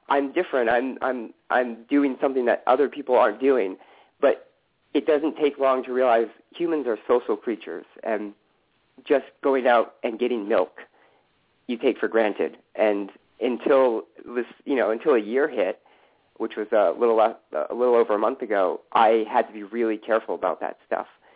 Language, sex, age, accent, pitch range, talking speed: English, male, 40-59, American, 110-140 Hz, 175 wpm